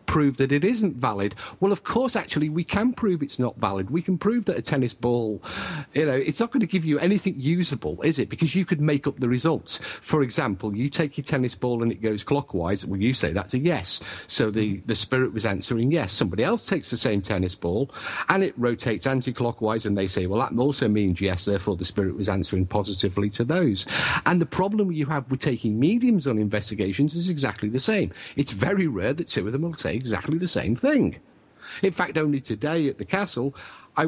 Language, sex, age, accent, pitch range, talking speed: English, male, 50-69, British, 100-150 Hz, 225 wpm